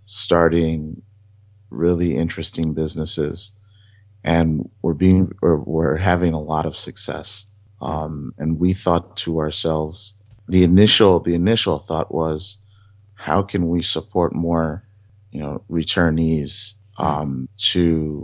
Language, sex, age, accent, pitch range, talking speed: English, male, 30-49, American, 80-100 Hz, 120 wpm